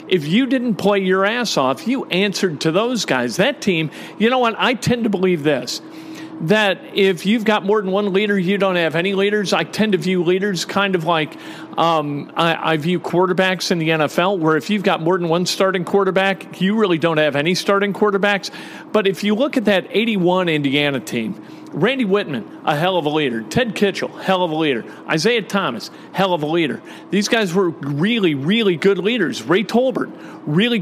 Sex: male